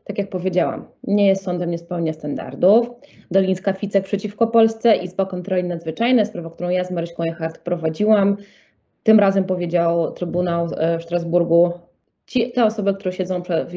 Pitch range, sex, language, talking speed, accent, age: 175-210 Hz, female, English, 150 wpm, Polish, 20-39